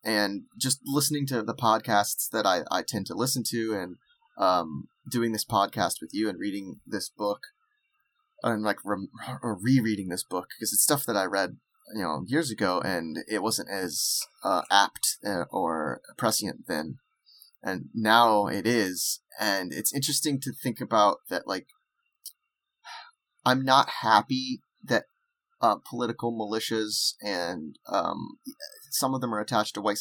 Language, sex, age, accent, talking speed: English, male, 20-39, American, 155 wpm